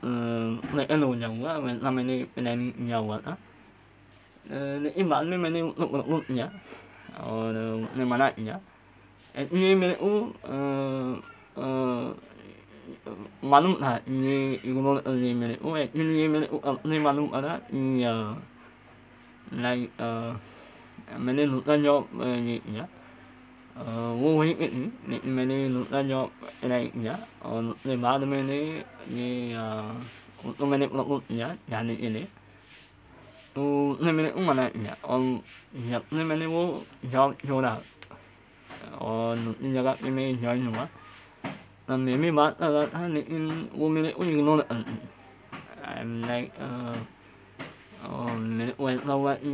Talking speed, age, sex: 50 wpm, 20-39, male